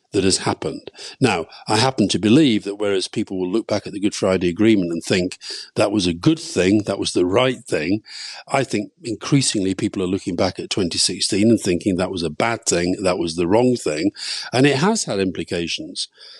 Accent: British